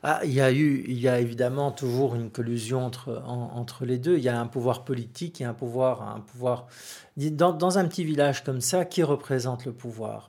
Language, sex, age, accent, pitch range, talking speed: French, male, 50-69, French, 120-140 Hz, 240 wpm